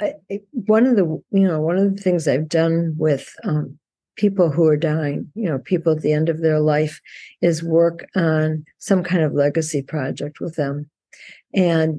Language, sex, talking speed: English, female, 185 wpm